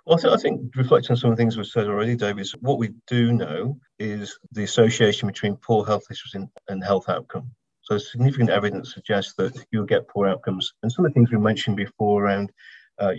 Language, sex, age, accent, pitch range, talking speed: English, male, 50-69, British, 100-120 Hz, 215 wpm